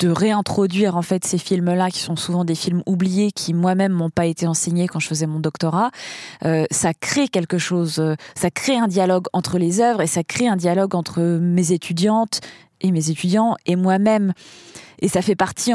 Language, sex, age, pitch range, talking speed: French, female, 20-39, 170-215 Hz, 200 wpm